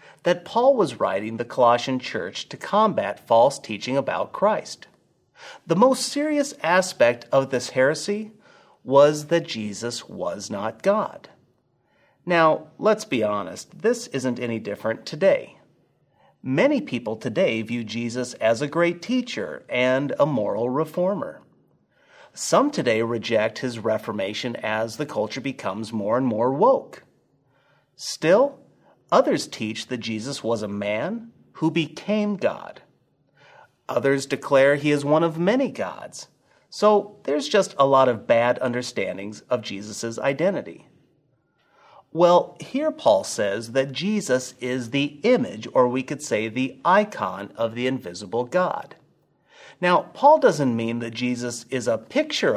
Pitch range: 120-180 Hz